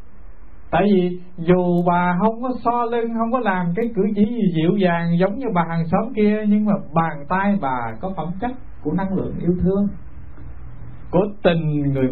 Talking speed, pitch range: 195 wpm, 125-195 Hz